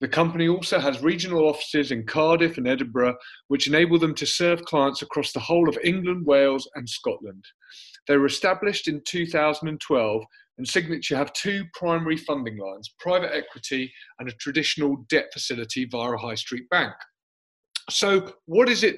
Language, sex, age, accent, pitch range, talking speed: English, male, 30-49, British, 135-175 Hz, 165 wpm